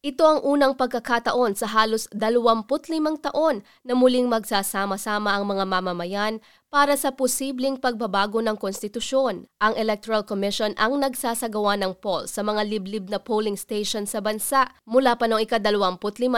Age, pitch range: 20-39, 210-255 Hz